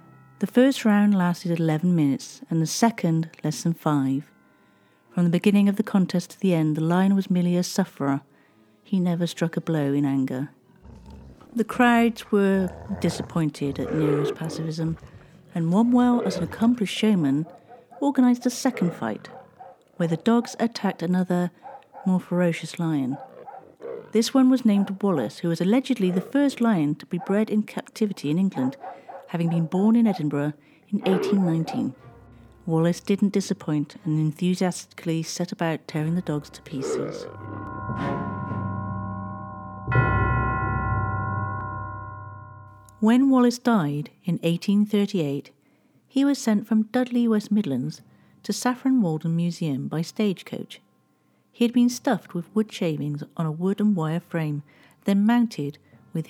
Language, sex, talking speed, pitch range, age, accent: English, female, 135 wpm, 145-210 Hz, 50-69, British